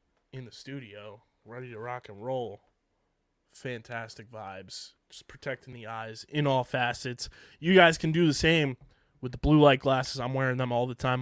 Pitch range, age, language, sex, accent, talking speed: 120-150 Hz, 20-39, English, male, American, 180 wpm